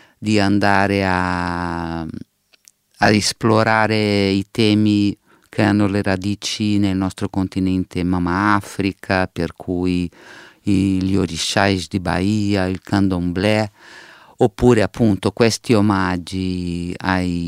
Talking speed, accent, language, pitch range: 100 wpm, native, Italian, 95-105 Hz